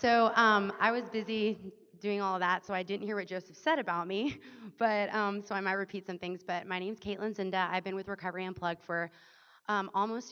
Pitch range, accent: 180-220 Hz, American